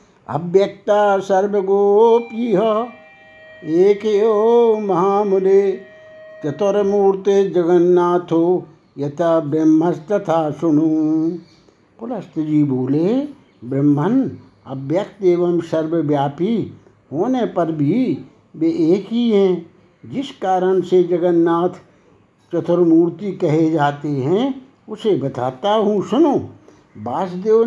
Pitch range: 165-215 Hz